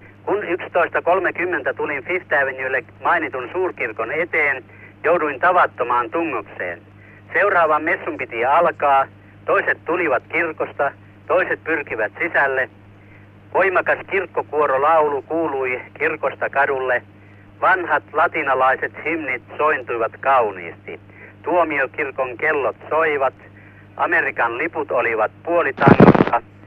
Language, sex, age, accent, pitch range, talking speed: Finnish, male, 60-79, native, 100-160 Hz, 85 wpm